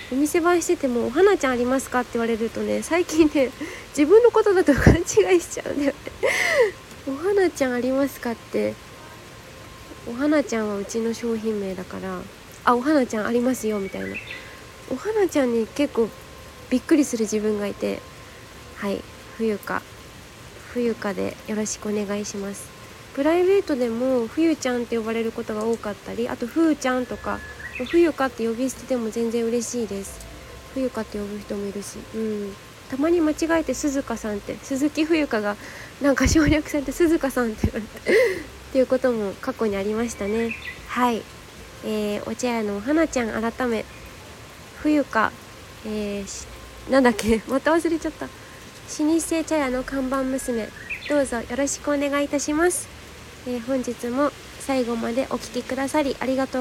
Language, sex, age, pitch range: Japanese, female, 20-39, 225-295 Hz